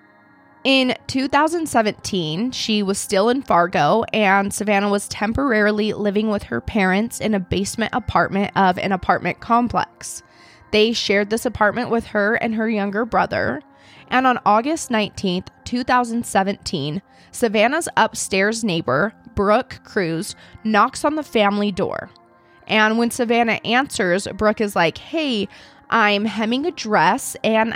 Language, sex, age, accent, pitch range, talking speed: English, female, 20-39, American, 195-235 Hz, 130 wpm